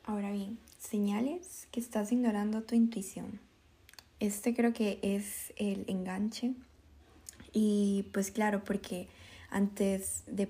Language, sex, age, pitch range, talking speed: Spanish, female, 10-29, 200-240 Hz, 115 wpm